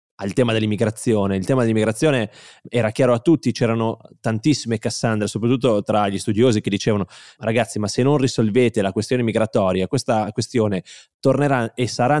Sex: male